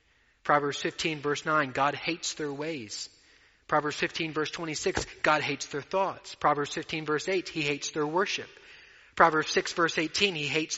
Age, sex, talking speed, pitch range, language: 30-49, male, 165 wpm, 135-170 Hz, English